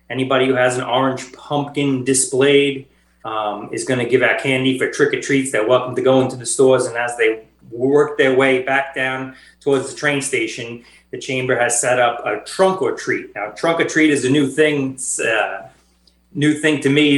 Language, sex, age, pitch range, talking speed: English, male, 30-49, 120-140 Hz, 175 wpm